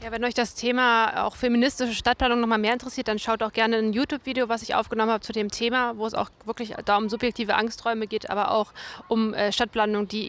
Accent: German